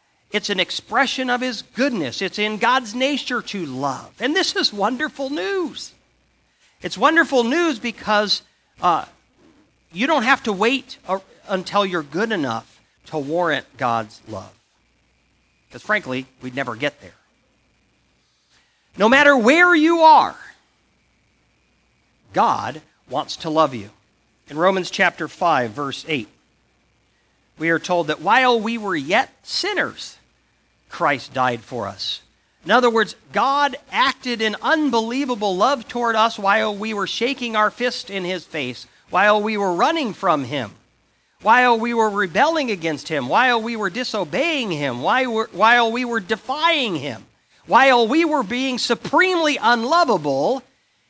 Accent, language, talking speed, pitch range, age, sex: American, English, 140 wpm, 160-255 Hz, 50-69, male